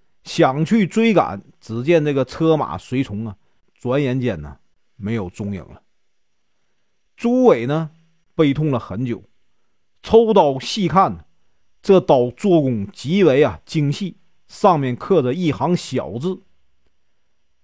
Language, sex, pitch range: Chinese, male, 115-185 Hz